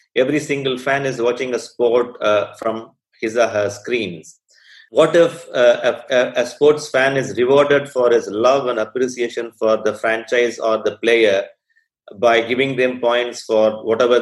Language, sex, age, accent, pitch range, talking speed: English, male, 30-49, Indian, 115-140 Hz, 170 wpm